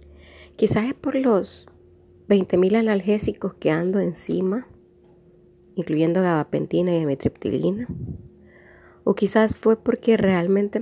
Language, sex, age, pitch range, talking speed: Spanish, female, 30-49, 150-205 Hz, 100 wpm